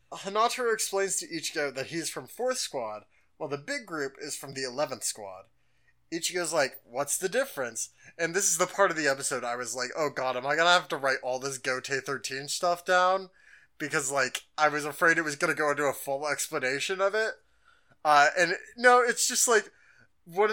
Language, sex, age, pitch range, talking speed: English, male, 20-39, 140-205 Hz, 210 wpm